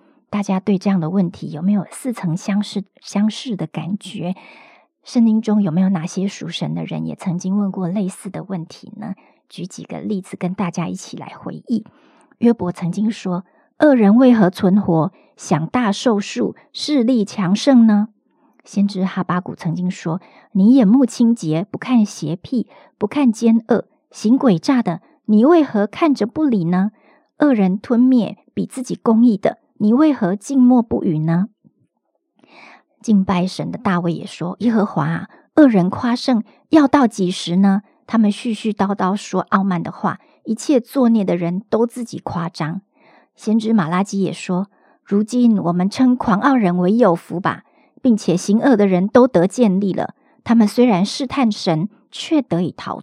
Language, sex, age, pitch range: Chinese, male, 50-69, 185-240 Hz